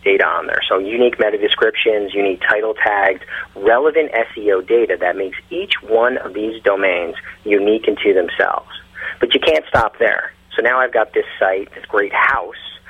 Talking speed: 170 wpm